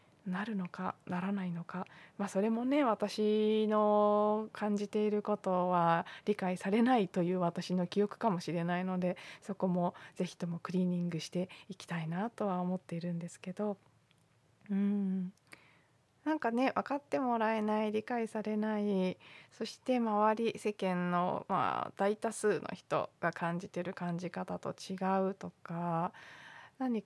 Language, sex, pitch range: Japanese, female, 170-205 Hz